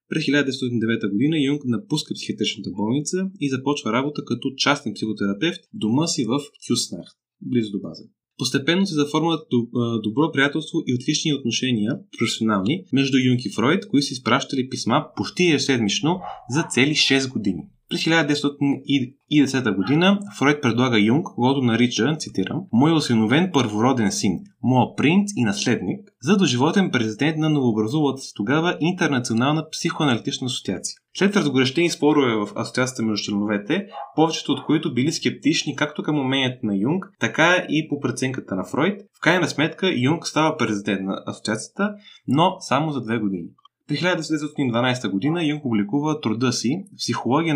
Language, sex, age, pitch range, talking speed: Bulgarian, male, 20-39, 115-155 Hz, 145 wpm